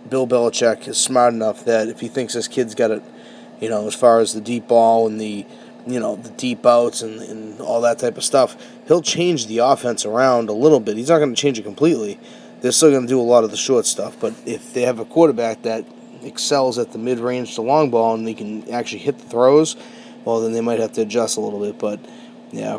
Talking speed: 250 wpm